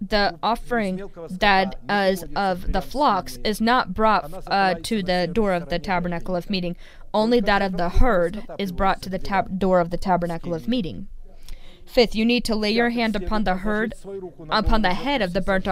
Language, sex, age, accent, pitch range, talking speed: English, female, 20-39, American, 185-220 Hz, 185 wpm